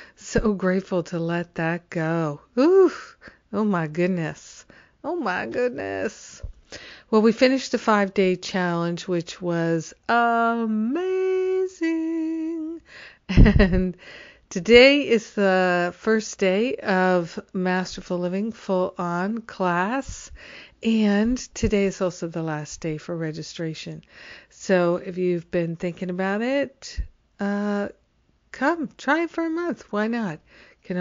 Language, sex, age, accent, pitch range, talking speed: English, female, 50-69, American, 180-225 Hz, 115 wpm